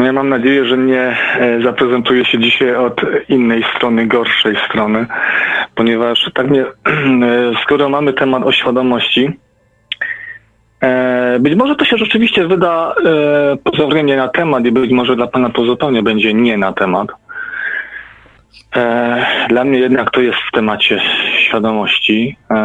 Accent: native